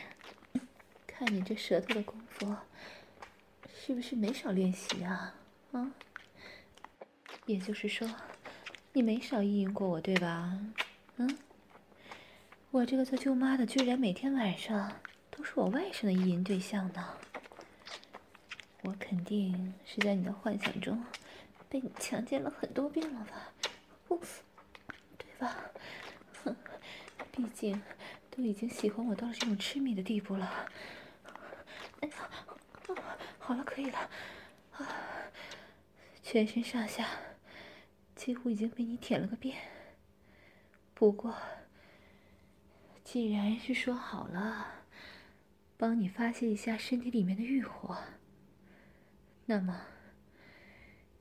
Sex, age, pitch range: female, 20-39, 195-250 Hz